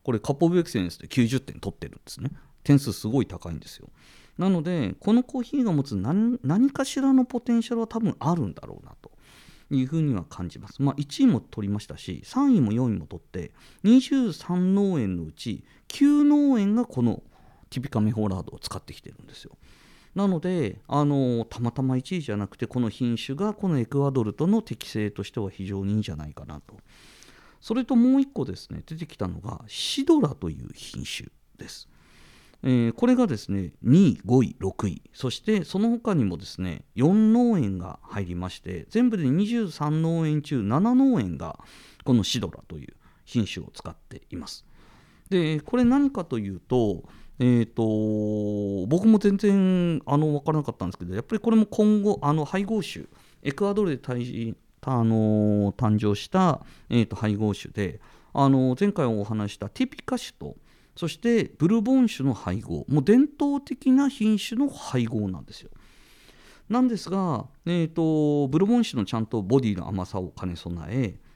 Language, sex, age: Japanese, male, 40-59